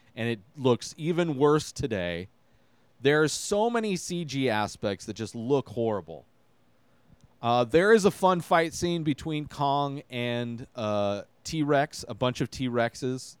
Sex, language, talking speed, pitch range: male, English, 140 wpm, 120-160 Hz